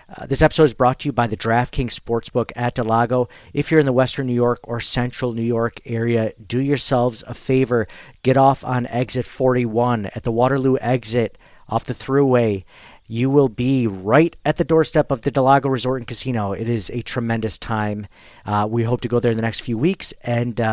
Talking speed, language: 205 wpm, English